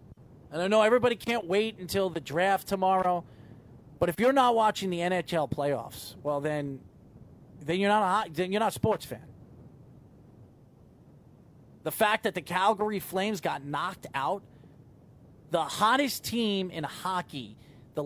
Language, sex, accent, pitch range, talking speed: English, male, American, 150-215 Hz, 140 wpm